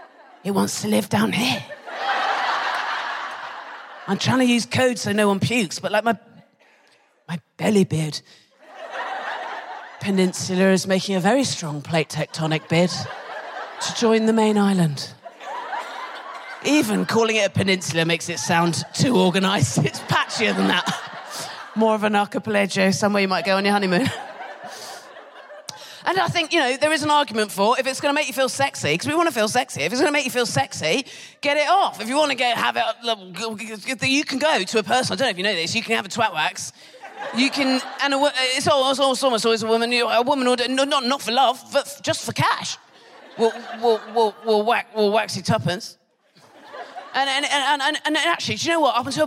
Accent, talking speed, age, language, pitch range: British, 190 wpm, 30-49, English, 190-270 Hz